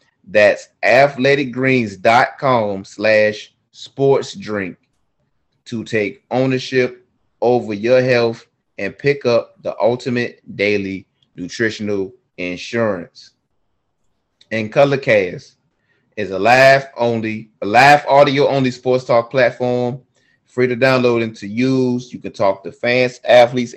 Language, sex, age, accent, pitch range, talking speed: English, male, 30-49, American, 105-125 Hz, 105 wpm